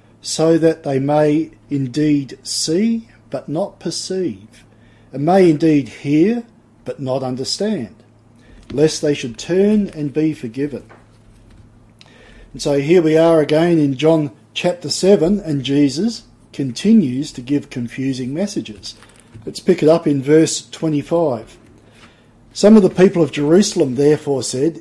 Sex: male